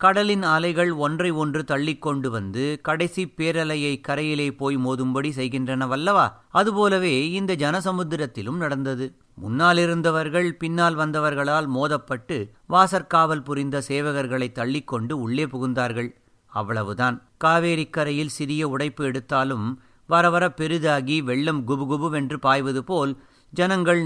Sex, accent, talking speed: male, native, 95 wpm